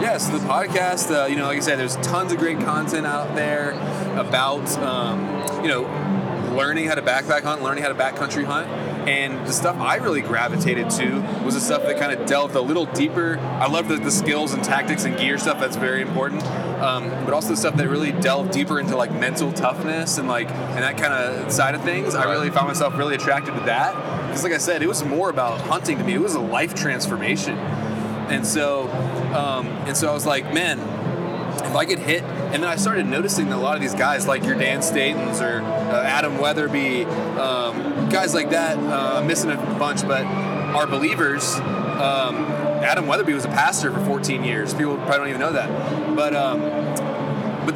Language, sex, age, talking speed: English, male, 20-39, 210 wpm